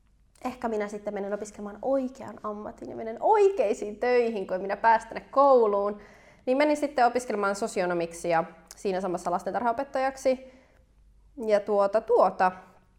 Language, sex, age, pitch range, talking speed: Finnish, female, 20-39, 195-245 Hz, 130 wpm